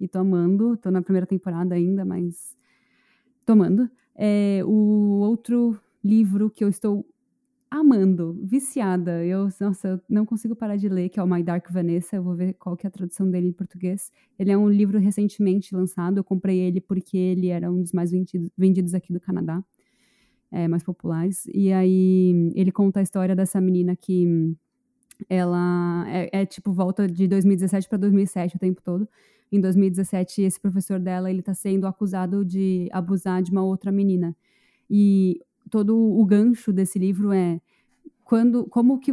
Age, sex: 20-39, female